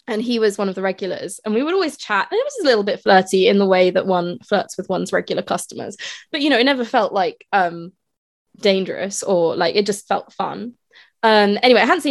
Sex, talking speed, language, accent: female, 245 wpm, English, British